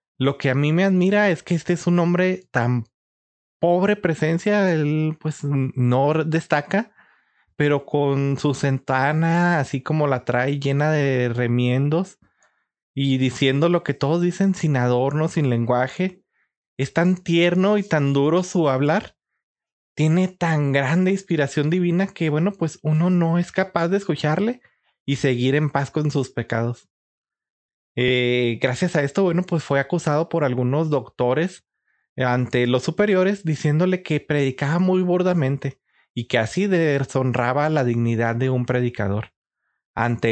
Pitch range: 130-170 Hz